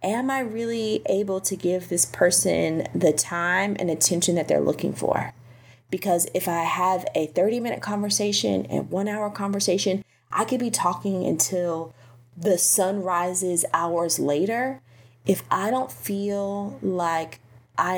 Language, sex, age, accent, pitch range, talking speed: English, female, 20-39, American, 150-205 Hz, 140 wpm